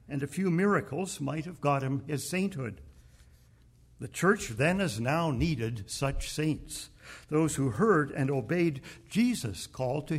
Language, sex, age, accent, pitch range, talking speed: English, male, 60-79, American, 120-165 Hz, 155 wpm